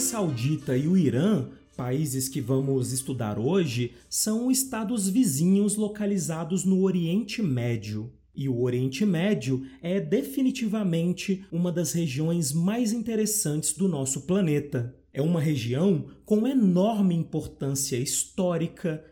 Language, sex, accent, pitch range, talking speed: Portuguese, male, Brazilian, 145-205 Hz, 115 wpm